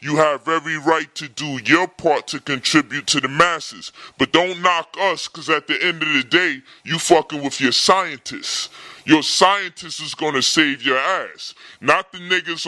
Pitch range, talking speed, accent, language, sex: 155-195 Hz, 190 wpm, American, English, female